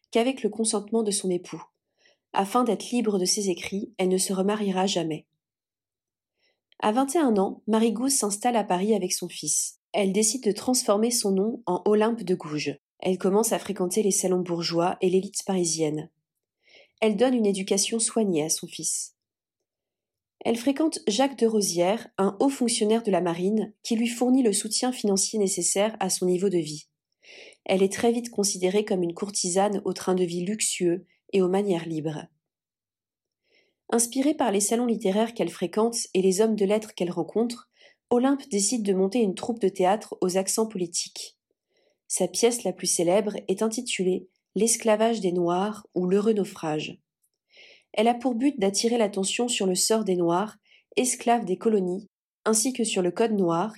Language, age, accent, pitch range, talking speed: French, 40-59, French, 180-225 Hz, 175 wpm